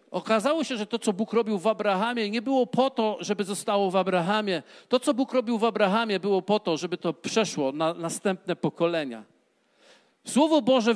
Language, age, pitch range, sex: Polish, 50-69, 175-220 Hz, male